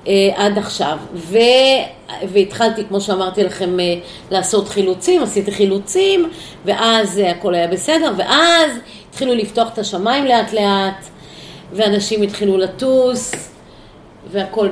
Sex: female